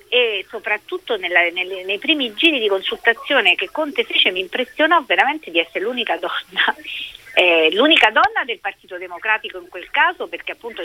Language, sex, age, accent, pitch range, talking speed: Italian, female, 40-59, native, 185-305 Hz, 165 wpm